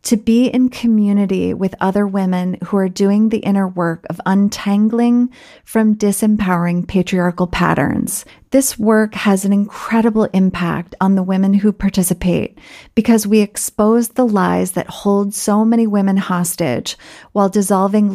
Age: 30-49